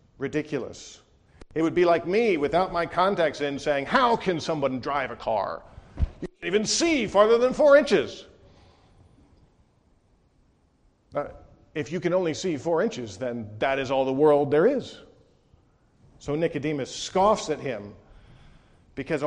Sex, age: male, 50-69